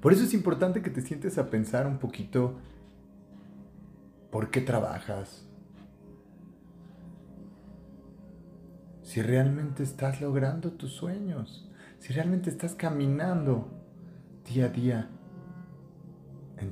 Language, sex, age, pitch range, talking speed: Spanish, male, 40-59, 105-165 Hz, 100 wpm